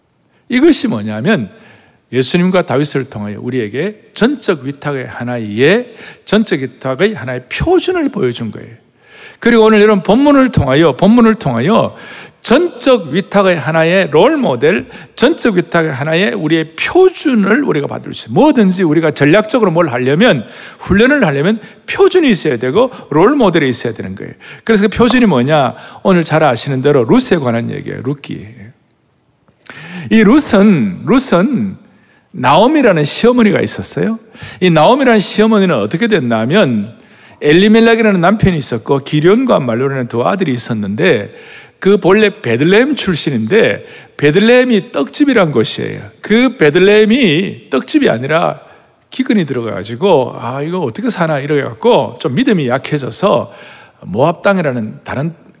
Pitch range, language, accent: 145-225 Hz, Korean, native